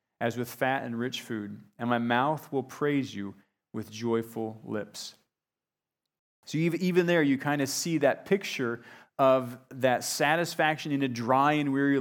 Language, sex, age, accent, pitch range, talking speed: English, male, 40-59, American, 115-140 Hz, 160 wpm